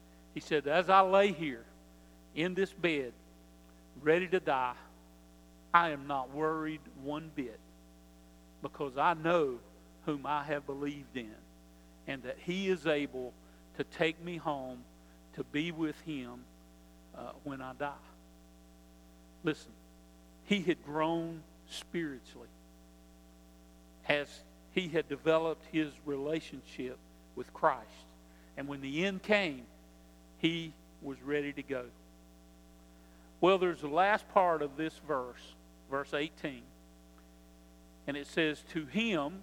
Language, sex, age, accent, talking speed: English, male, 50-69, American, 125 wpm